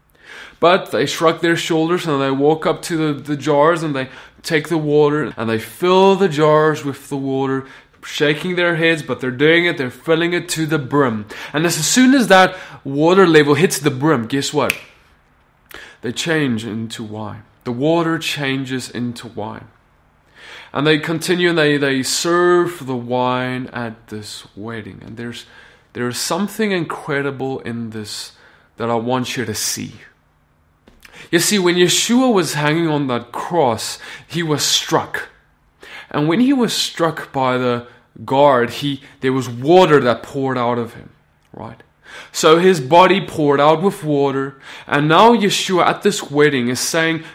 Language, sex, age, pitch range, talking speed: English, male, 20-39, 125-170 Hz, 165 wpm